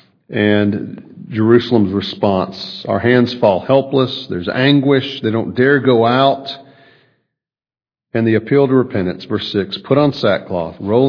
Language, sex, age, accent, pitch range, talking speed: English, male, 50-69, American, 100-130 Hz, 135 wpm